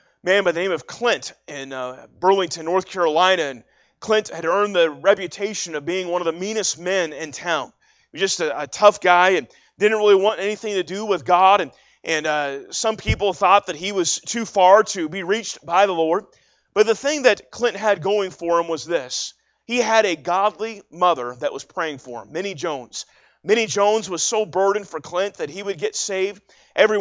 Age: 30-49